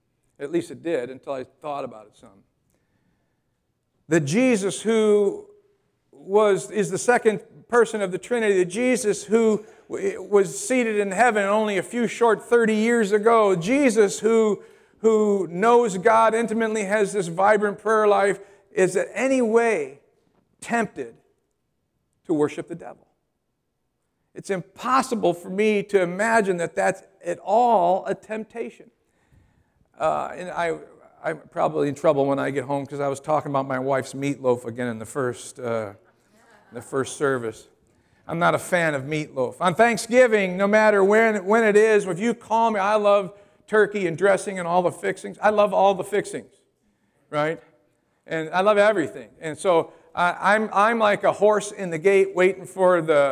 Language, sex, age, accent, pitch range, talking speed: English, male, 50-69, American, 160-215 Hz, 165 wpm